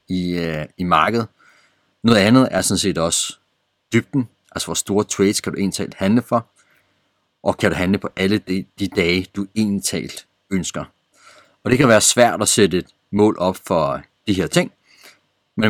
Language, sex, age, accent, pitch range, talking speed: Danish, male, 30-49, native, 95-110 Hz, 175 wpm